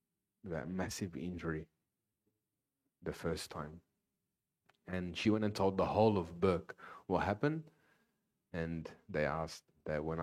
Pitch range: 80-110 Hz